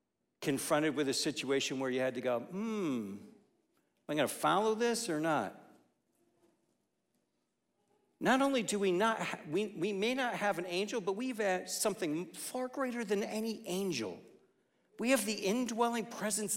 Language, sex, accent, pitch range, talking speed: English, male, American, 175-240 Hz, 165 wpm